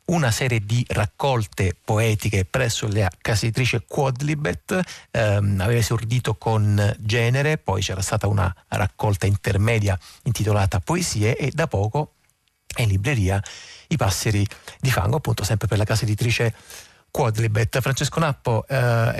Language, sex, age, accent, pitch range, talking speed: Italian, male, 40-59, native, 105-125 Hz, 140 wpm